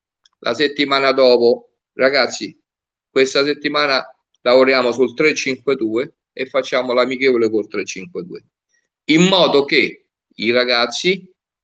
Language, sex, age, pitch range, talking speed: Italian, male, 50-69, 120-160 Hz, 100 wpm